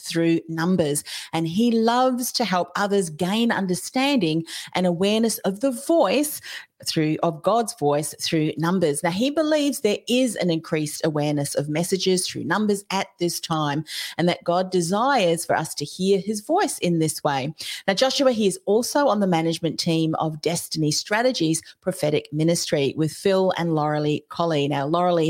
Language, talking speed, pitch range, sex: English, 165 wpm, 155-200 Hz, female